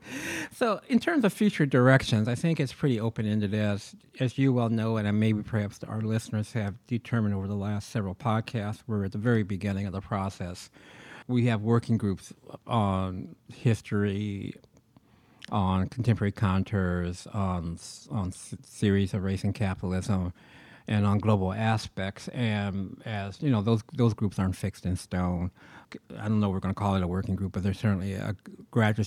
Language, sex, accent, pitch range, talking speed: English, male, American, 95-110 Hz, 175 wpm